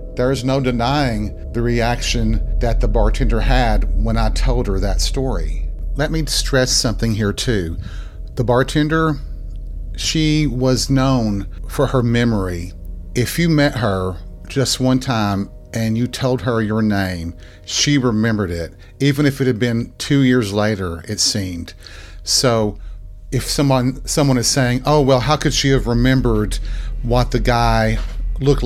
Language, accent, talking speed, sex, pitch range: English, American, 155 wpm, male, 95-130 Hz